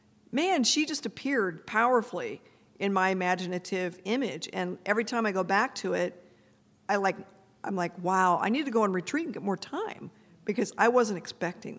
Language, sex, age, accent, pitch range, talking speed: English, female, 50-69, American, 185-235 Hz, 185 wpm